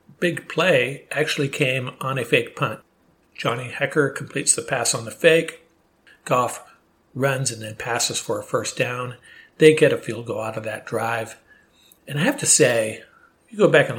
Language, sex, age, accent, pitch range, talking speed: English, male, 50-69, American, 120-155 Hz, 190 wpm